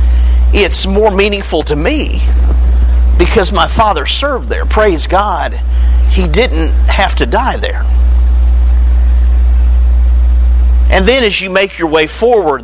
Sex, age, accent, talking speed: male, 50-69, American, 125 wpm